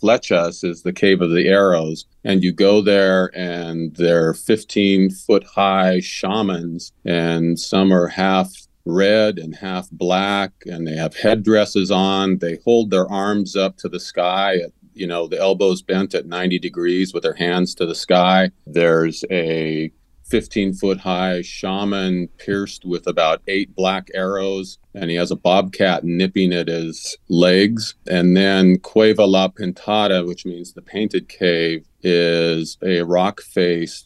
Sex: male